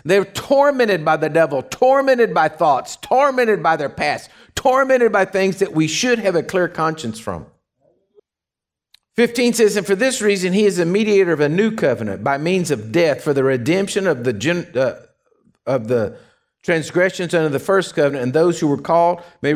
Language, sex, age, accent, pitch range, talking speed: English, male, 50-69, American, 140-185 Hz, 180 wpm